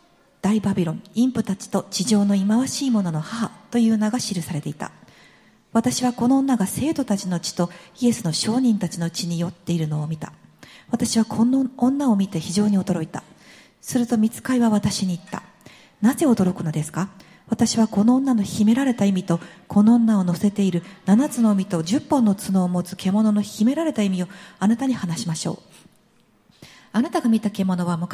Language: English